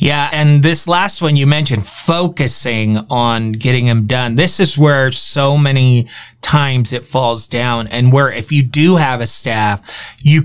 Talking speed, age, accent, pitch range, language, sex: 170 wpm, 30-49, American, 125-170 Hz, English, male